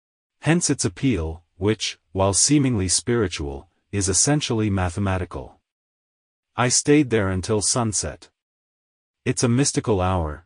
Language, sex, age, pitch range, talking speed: Italian, male, 40-59, 90-120 Hz, 110 wpm